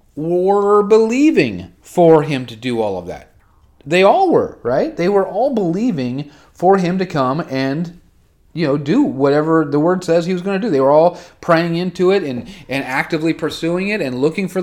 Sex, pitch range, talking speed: male, 145-200 Hz, 195 wpm